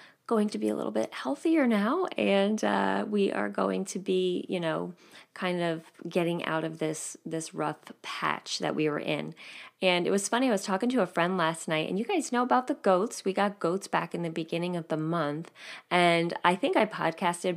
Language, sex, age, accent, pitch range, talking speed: English, female, 30-49, American, 160-235 Hz, 220 wpm